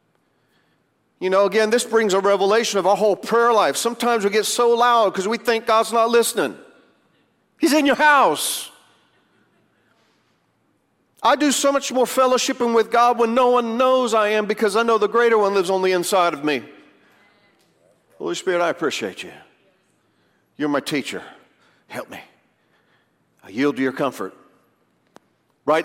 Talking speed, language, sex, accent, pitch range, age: 160 wpm, English, male, American, 155-225 Hz, 50-69